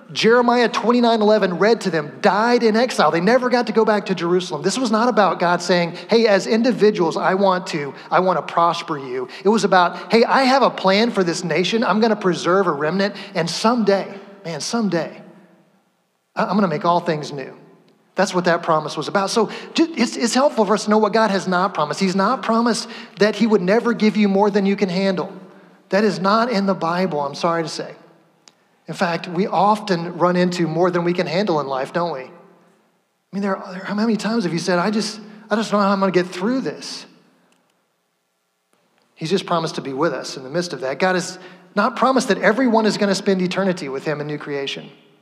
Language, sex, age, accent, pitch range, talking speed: English, male, 30-49, American, 170-210 Hz, 225 wpm